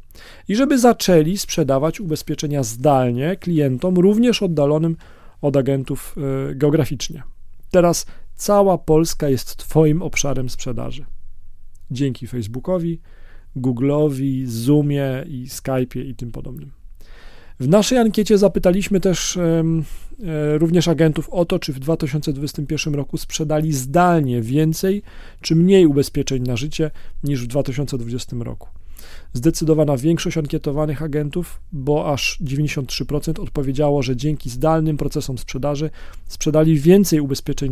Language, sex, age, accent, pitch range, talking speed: Polish, male, 40-59, native, 125-160 Hz, 115 wpm